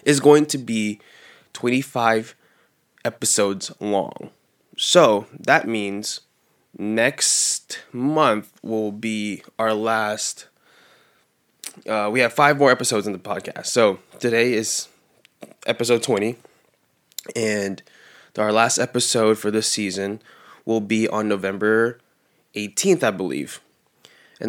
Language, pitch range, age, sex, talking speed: English, 105-125 Hz, 20-39, male, 110 wpm